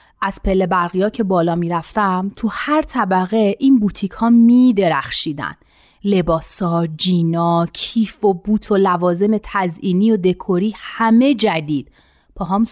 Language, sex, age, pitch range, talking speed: Persian, female, 30-49, 175-250 Hz, 120 wpm